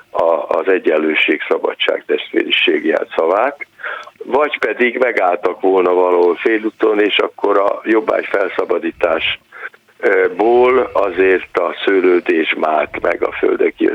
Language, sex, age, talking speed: Hungarian, male, 60-79, 100 wpm